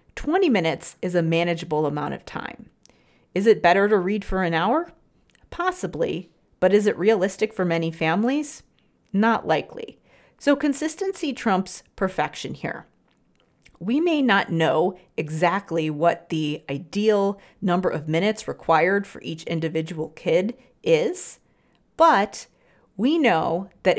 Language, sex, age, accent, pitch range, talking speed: English, female, 40-59, American, 165-235 Hz, 130 wpm